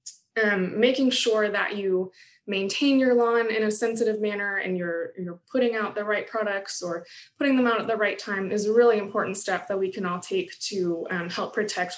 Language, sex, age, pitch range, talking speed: English, female, 20-39, 185-230 Hz, 210 wpm